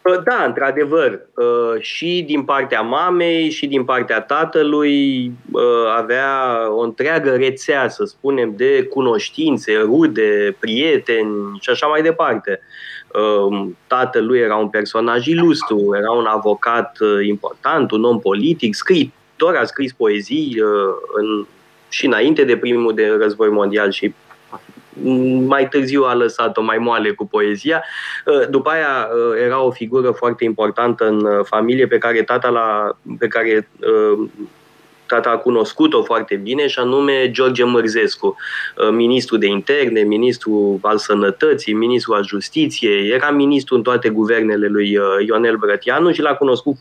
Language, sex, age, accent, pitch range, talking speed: Romanian, male, 20-39, native, 110-170 Hz, 125 wpm